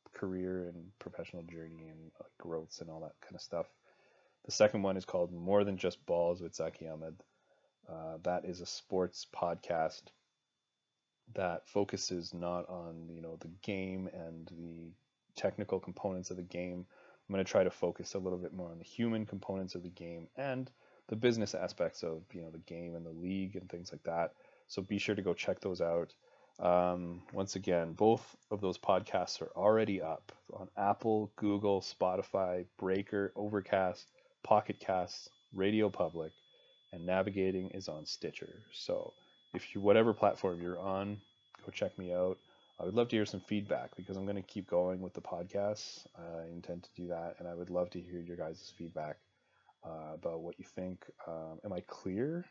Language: English